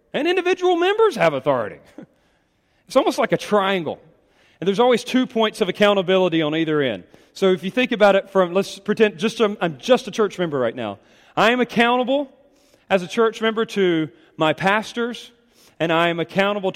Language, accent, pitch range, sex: English, American, 190-245 Hz, male